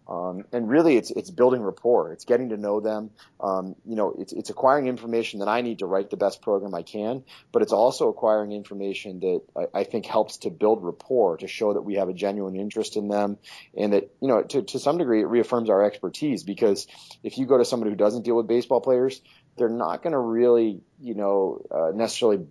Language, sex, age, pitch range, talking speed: English, male, 30-49, 95-110 Hz, 225 wpm